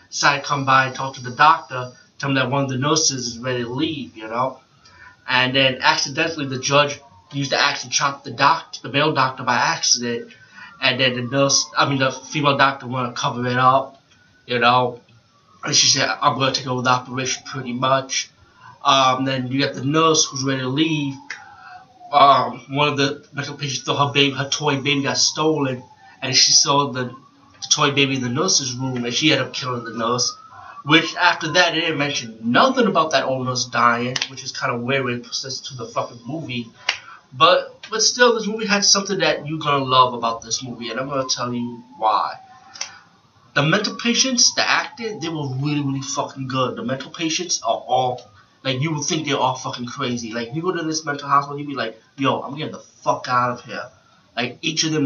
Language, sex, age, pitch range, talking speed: English, male, 20-39, 125-150 Hz, 215 wpm